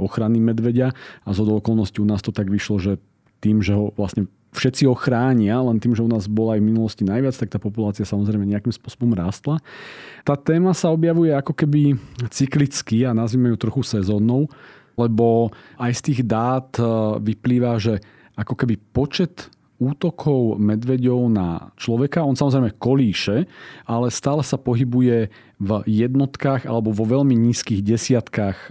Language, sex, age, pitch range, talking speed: Slovak, male, 40-59, 105-130 Hz, 155 wpm